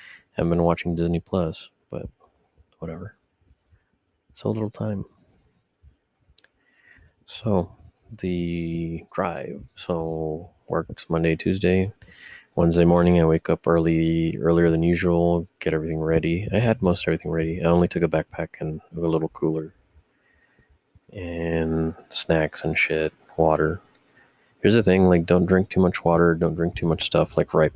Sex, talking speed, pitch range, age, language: male, 140 wpm, 80-90 Hz, 30-49, English